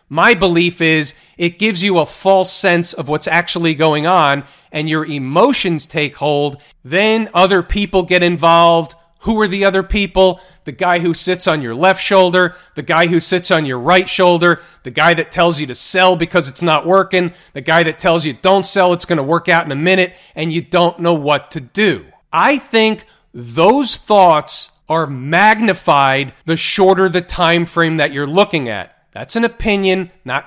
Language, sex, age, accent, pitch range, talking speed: English, male, 40-59, American, 160-190 Hz, 190 wpm